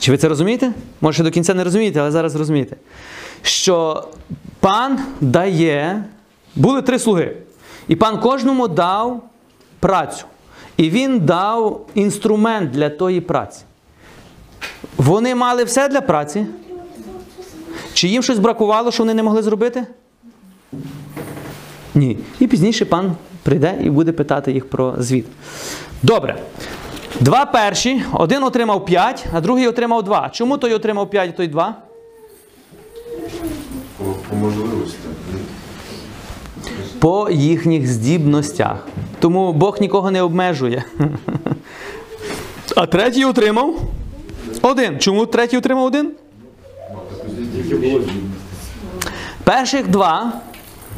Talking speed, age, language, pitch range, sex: 105 wpm, 30-49, Ukrainian, 155-240 Hz, male